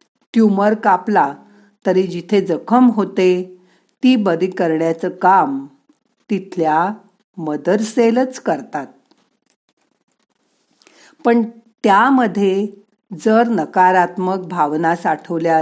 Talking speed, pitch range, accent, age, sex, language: 75 wpm, 175-230 Hz, native, 50-69, female, Marathi